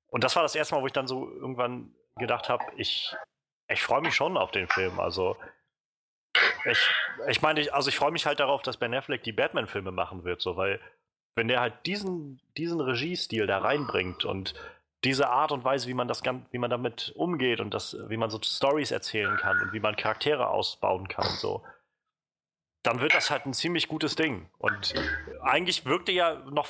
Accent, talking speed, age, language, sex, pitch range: German, 205 wpm, 30-49, German, male, 115-150 Hz